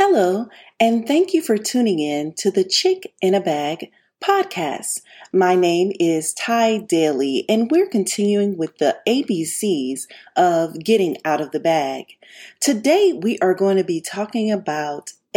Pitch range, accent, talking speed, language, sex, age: 165-225 Hz, American, 150 wpm, English, female, 40-59